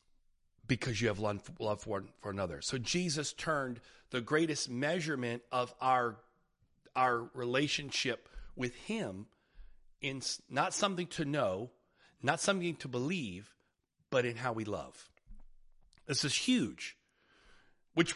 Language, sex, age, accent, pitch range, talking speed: English, male, 40-59, American, 140-185 Hz, 120 wpm